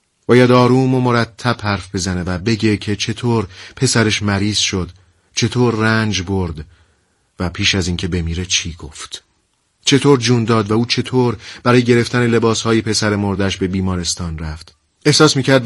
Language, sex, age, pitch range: Persian, male, 40-59, 95-125 Hz